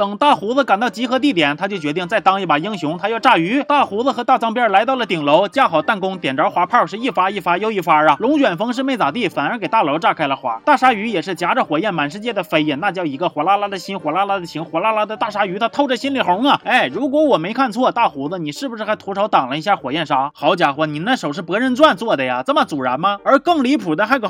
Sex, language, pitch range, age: male, Chinese, 185-270 Hz, 30-49